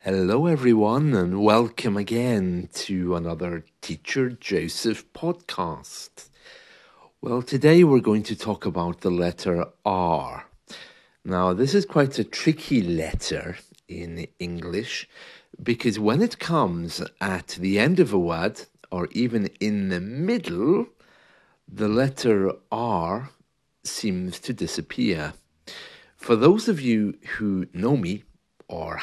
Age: 50-69